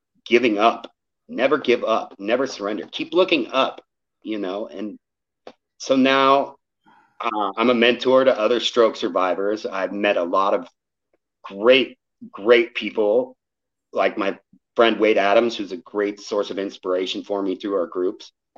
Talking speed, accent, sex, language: 150 wpm, American, male, English